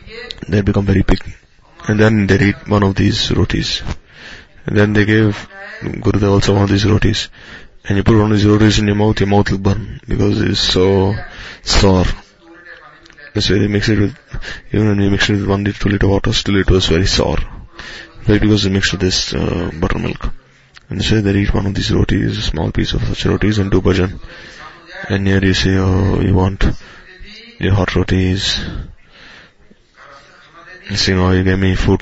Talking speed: 200 wpm